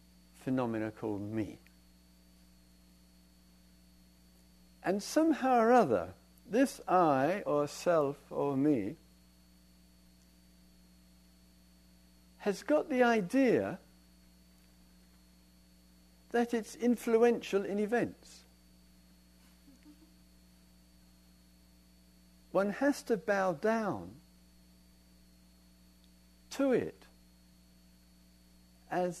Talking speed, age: 60 wpm, 60-79